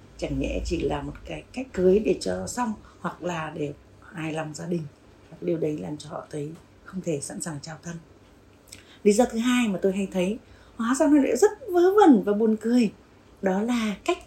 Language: Vietnamese